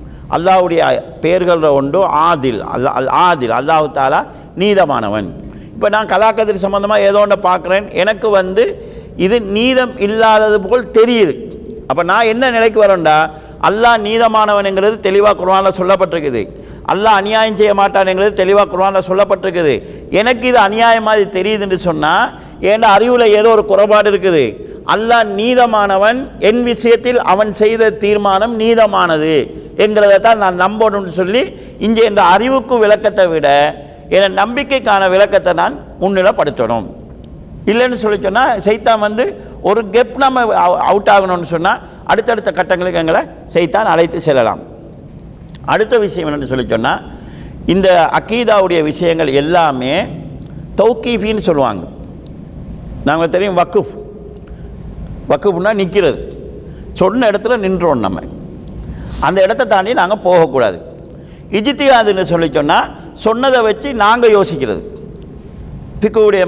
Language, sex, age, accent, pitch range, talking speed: Tamil, male, 50-69, native, 175-220 Hz, 110 wpm